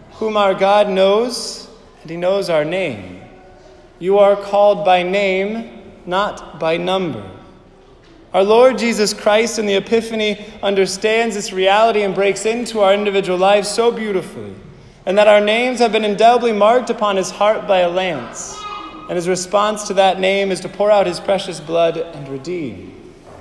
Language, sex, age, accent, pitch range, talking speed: English, male, 30-49, American, 185-215 Hz, 165 wpm